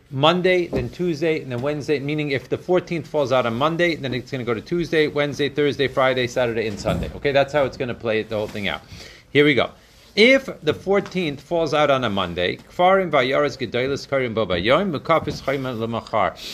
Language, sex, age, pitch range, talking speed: Hebrew, male, 40-59, 125-165 Hz, 215 wpm